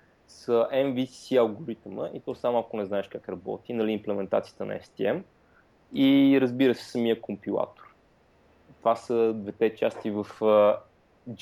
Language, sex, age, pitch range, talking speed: Bulgarian, male, 20-39, 105-135 Hz, 135 wpm